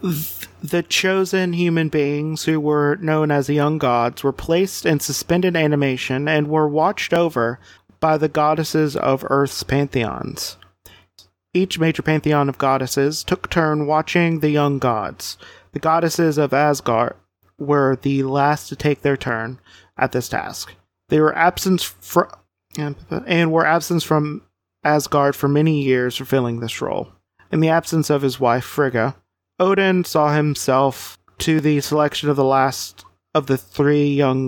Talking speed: 150 wpm